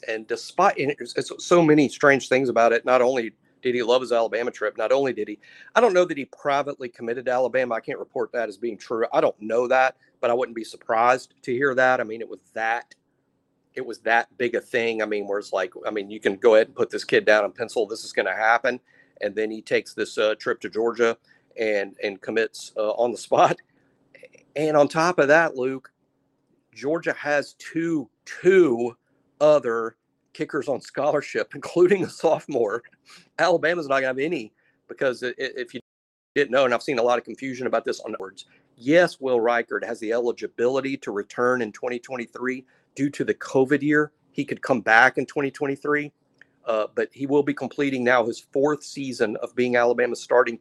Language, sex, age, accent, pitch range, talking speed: English, male, 40-59, American, 115-150 Hz, 205 wpm